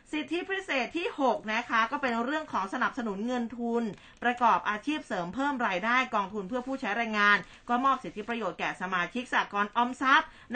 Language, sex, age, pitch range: Thai, female, 20-39, 210-260 Hz